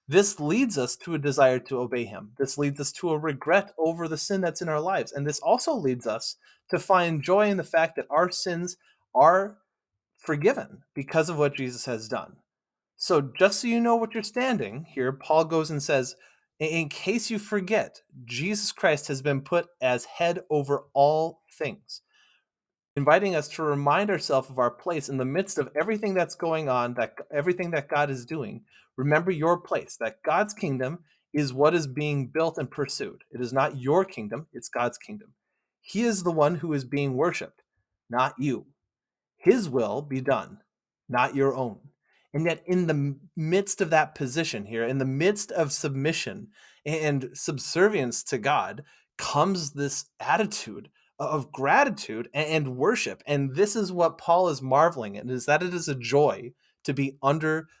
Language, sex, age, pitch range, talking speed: English, male, 30-49, 135-175 Hz, 180 wpm